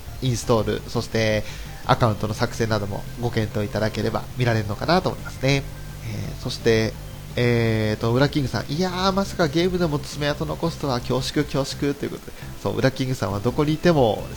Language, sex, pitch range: Japanese, male, 115-160 Hz